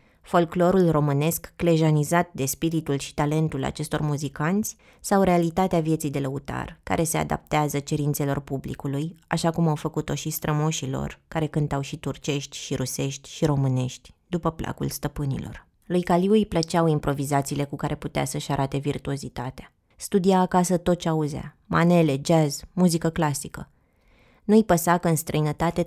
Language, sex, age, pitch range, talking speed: Romanian, female, 20-39, 140-170 Hz, 145 wpm